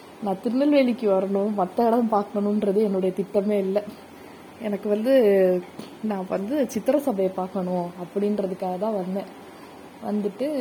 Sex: female